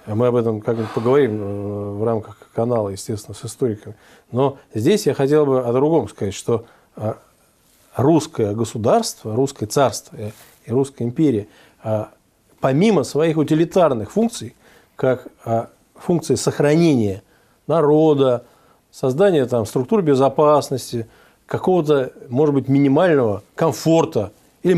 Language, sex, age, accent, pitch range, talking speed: Russian, male, 40-59, native, 120-160 Hz, 105 wpm